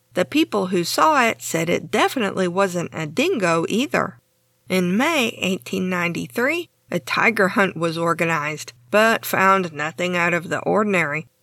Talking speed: 140 wpm